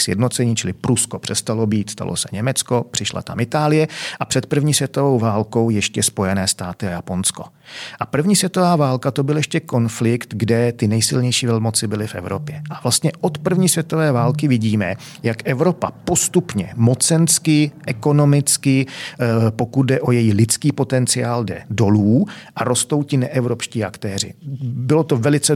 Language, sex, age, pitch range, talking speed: Czech, male, 40-59, 110-140 Hz, 150 wpm